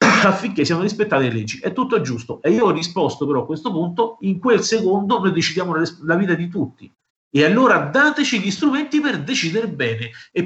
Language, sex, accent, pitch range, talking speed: Italian, male, native, 130-190 Hz, 205 wpm